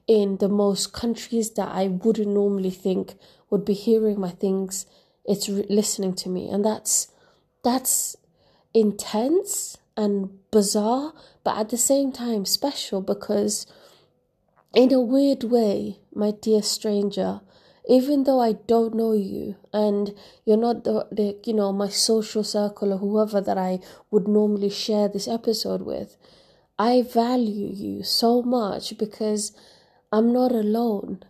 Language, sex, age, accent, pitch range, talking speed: English, female, 20-39, British, 200-230 Hz, 140 wpm